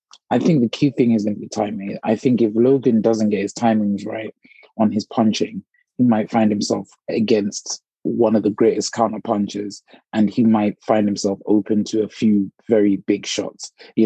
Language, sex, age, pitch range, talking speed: English, male, 20-39, 105-120 Hz, 195 wpm